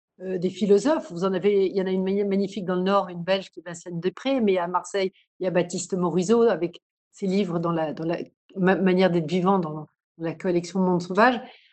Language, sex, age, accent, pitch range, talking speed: French, female, 50-69, French, 195-240 Hz, 220 wpm